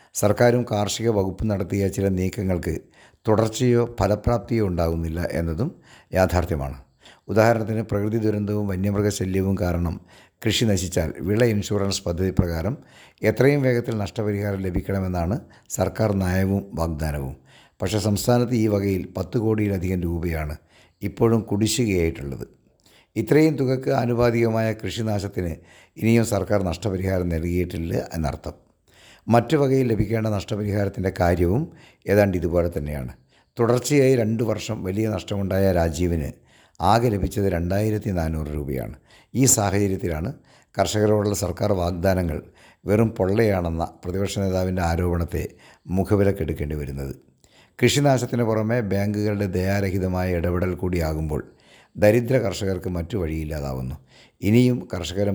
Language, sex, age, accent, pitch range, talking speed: Malayalam, male, 60-79, native, 85-110 Hz, 95 wpm